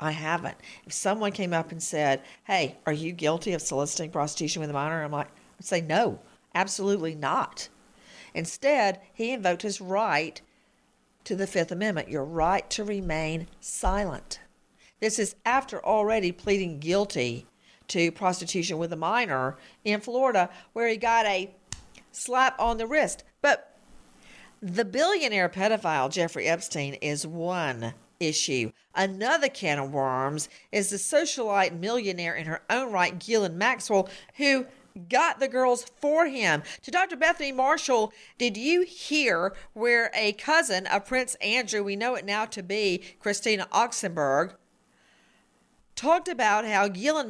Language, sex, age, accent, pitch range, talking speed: English, female, 50-69, American, 165-230 Hz, 145 wpm